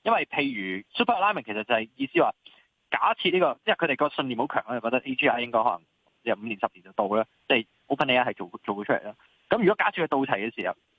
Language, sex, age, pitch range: Chinese, male, 20-39, 110-150 Hz